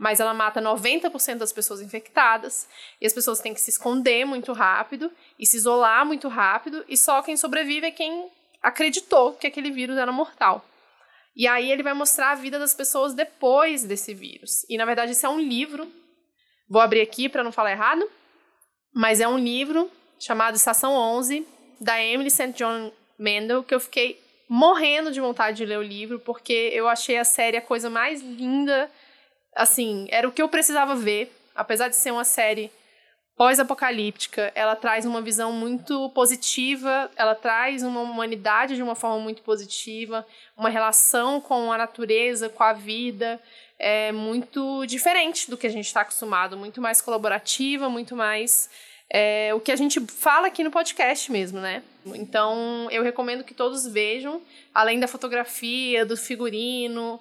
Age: 20-39